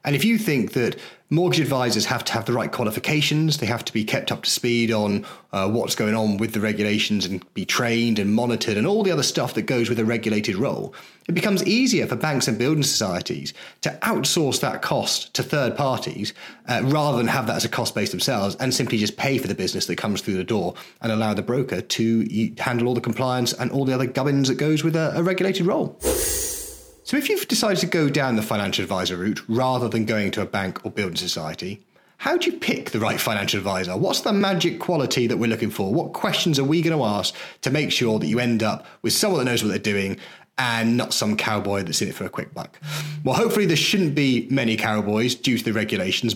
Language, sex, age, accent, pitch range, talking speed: English, male, 30-49, British, 110-155 Hz, 235 wpm